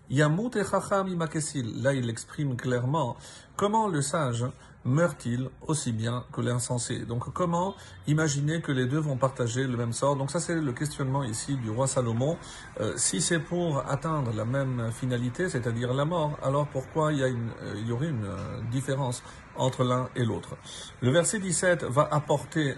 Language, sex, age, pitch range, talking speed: French, male, 50-69, 125-160 Hz, 160 wpm